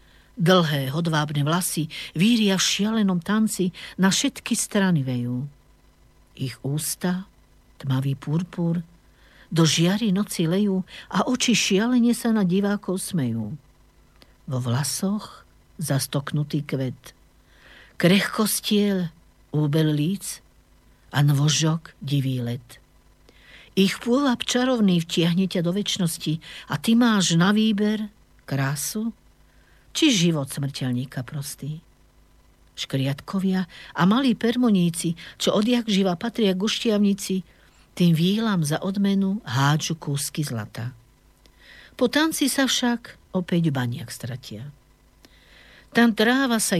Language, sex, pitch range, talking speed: Slovak, female, 140-200 Hz, 100 wpm